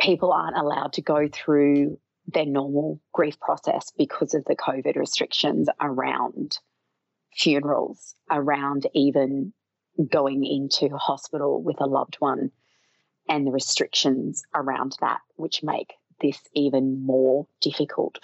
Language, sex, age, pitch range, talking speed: English, female, 30-49, 140-155 Hz, 125 wpm